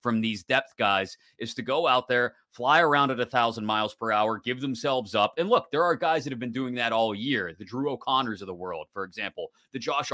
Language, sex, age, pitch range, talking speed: English, male, 30-49, 110-140 Hz, 250 wpm